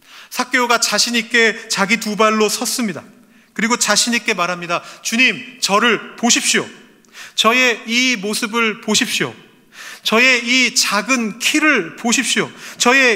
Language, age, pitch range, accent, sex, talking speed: English, 30-49, 160-235 Hz, Korean, male, 100 wpm